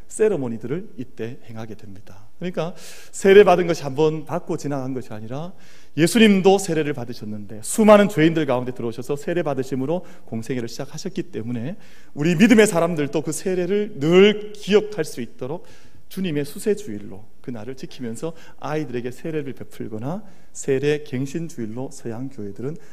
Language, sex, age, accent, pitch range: Korean, male, 40-59, native, 120-180 Hz